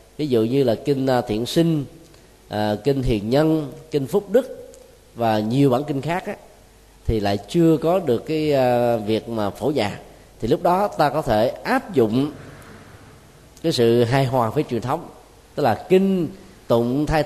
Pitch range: 120-160 Hz